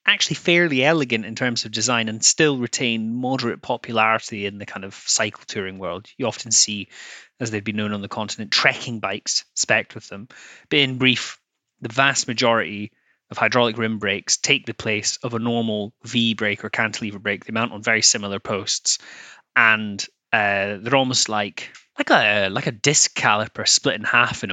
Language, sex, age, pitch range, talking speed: English, male, 20-39, 105-120 Hz, 185 wpm